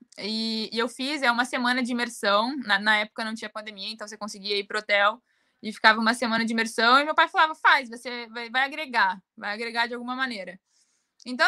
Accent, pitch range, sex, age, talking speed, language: Brazilian, 215-270 Hz, female, 20-39, 220 wpm, Portuguese